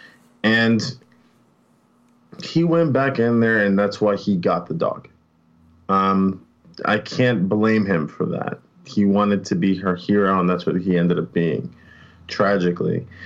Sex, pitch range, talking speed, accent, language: male, 95-110 Hz, 155 wpm, American, English